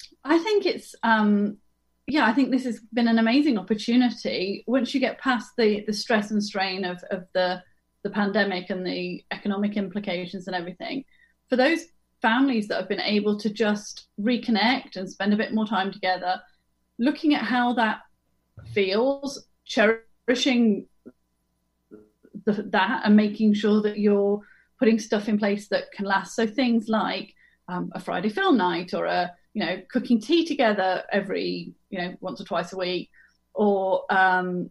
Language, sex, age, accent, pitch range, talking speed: English, female, 30-49, British, 200-255 Hz, 165 wpm